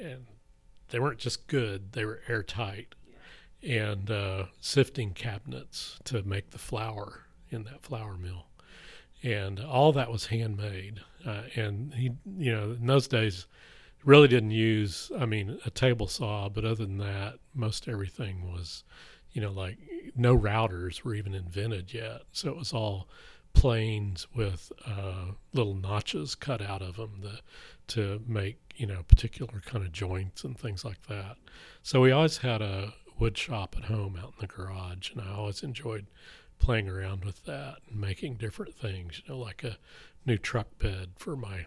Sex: male